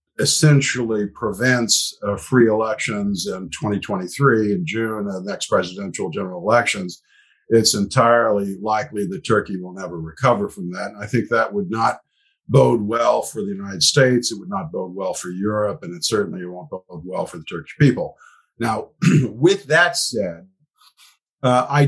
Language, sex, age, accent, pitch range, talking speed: English, male, 50-69, American, 100-135 Hz, 160 wpm